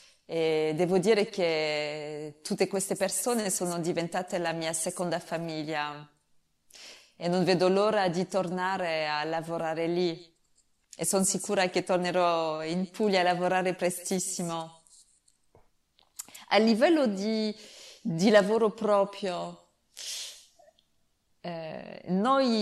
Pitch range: 170-200 Hz